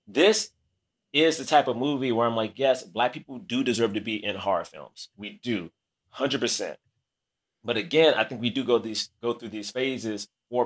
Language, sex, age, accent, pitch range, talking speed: English, male, 30-49, American, 115-140 Hz, 195 wpm